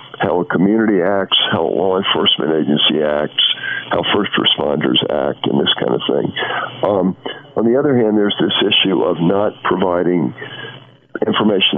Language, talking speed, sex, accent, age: English, 160 wpm, male, American, 50-69